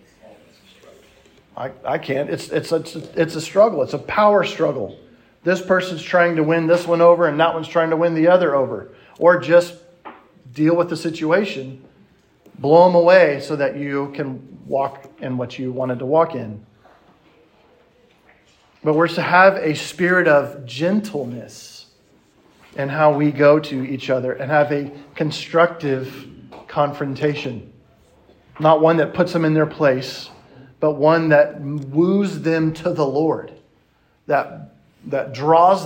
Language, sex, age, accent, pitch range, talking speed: English, male, 40-59, American, 135-170 Hz, 150 wpm